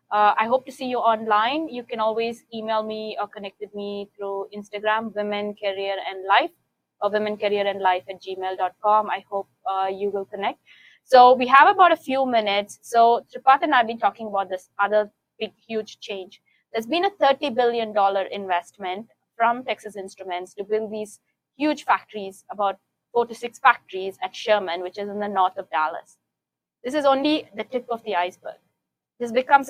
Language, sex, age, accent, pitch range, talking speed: English, female, 20-39, Indian, 200-235 Hz, 185 wpm